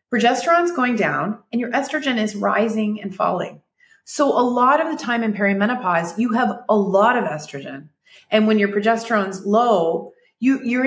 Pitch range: 175-230 Hz